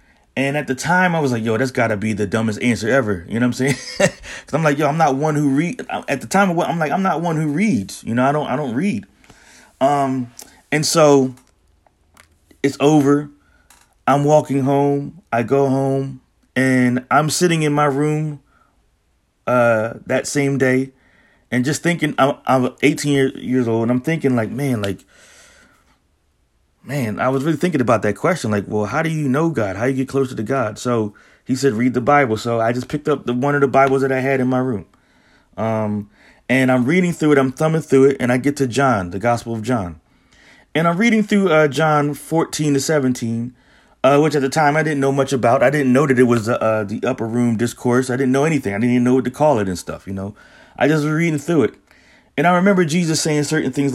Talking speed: 225 wpm